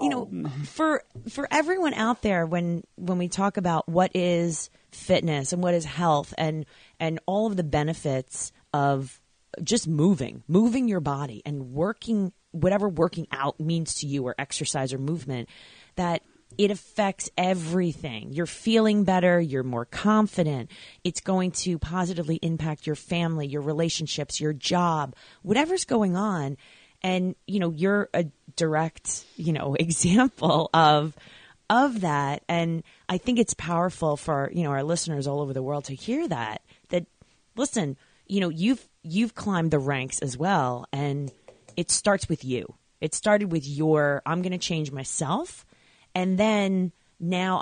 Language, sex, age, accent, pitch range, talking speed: English, female, 30-49, American, 145-185 Hz, 155 wpm